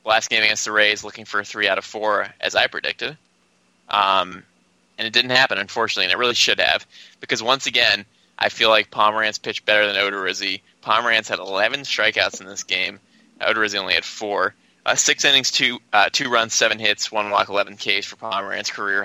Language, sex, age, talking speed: English, male, 20-39, 200 wpm